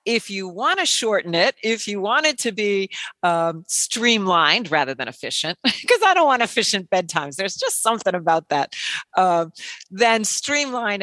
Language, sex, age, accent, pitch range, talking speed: English, female, 50-69, American, 175-230 Hz, 170 wpm